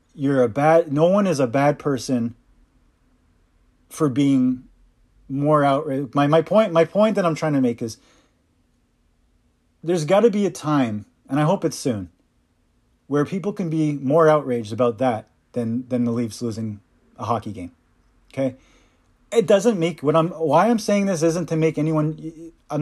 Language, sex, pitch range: English, male, 120-160 Hz